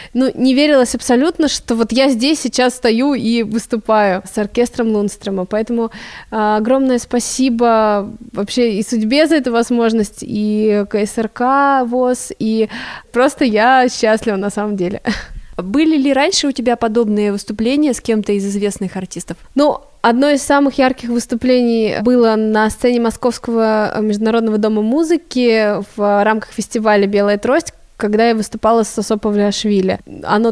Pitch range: 215-250 Hz